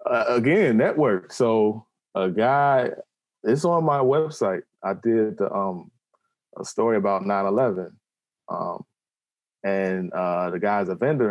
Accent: American